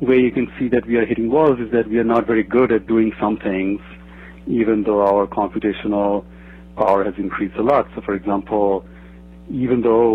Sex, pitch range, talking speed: male, 90-110 Hz, 200 wpm